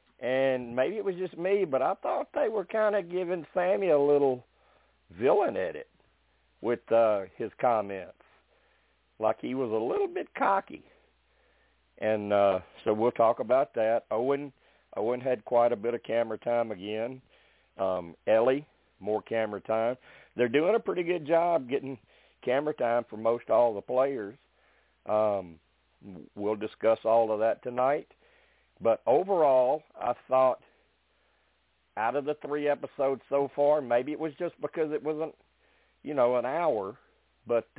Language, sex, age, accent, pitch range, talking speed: English, male, 50-69, American, 110-145 Hz, 150 wpm